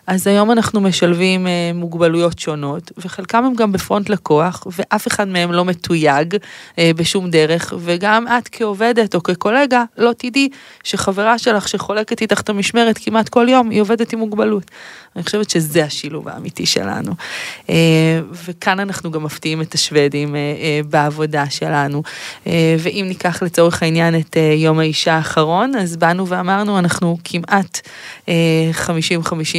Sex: female